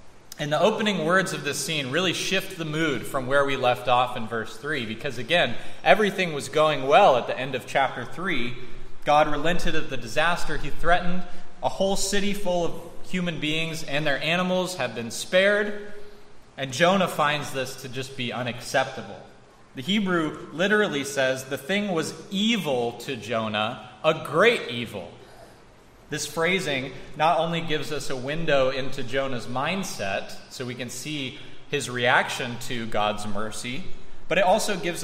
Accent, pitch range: American, 125-170 Hz